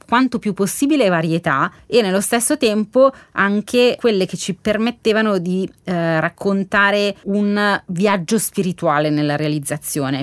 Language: Italian